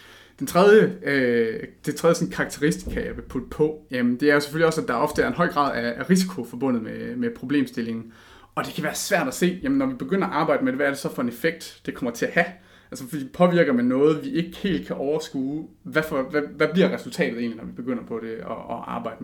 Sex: male